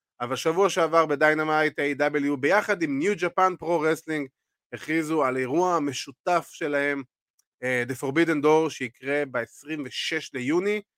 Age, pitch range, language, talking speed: 30-49, 140-215 Hz, Hebrew, 120 wpm